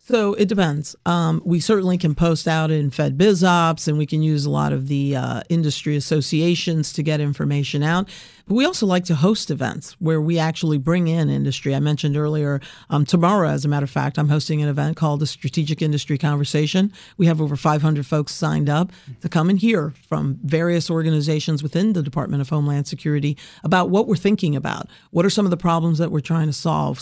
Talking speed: 210 wpm